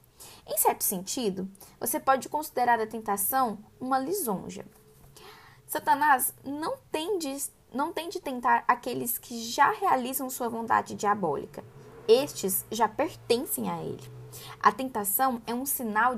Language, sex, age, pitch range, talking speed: Portuguese, female, 10-29, 220-300 Hz, 120 wpm